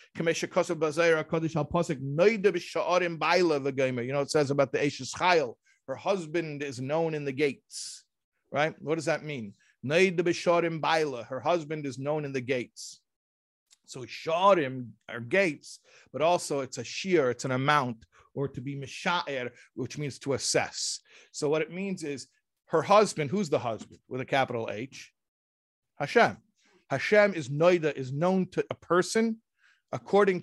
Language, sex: English, male